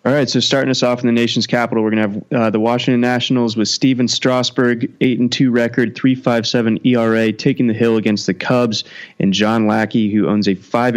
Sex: male